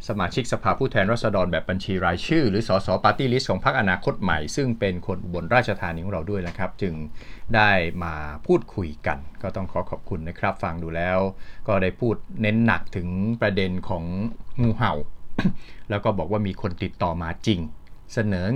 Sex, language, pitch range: male, Thai, 90-115 Hz